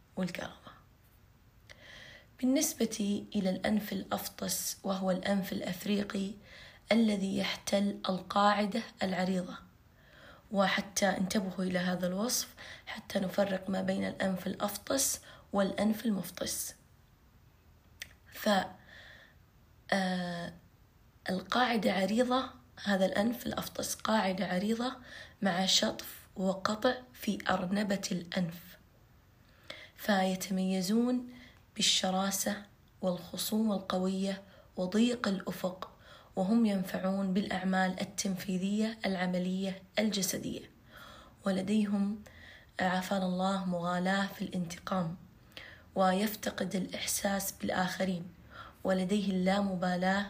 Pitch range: 185-205 Hz